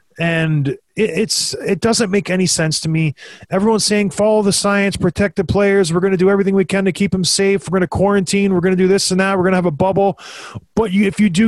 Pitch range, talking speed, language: 165-195 Hz, 260 wpm, English